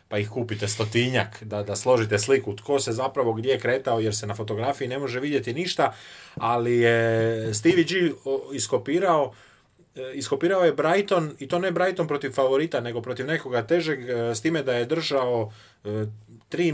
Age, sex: 30-49, male